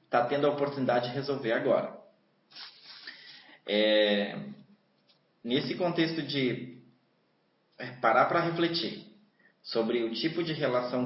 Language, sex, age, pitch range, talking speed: Portuguese, male, 20-39, 125-170 Hz, 105 wpm